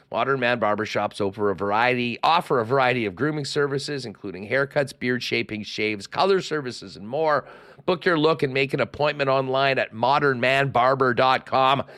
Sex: male